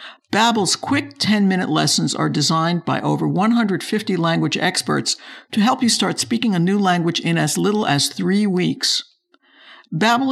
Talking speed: 150 wpm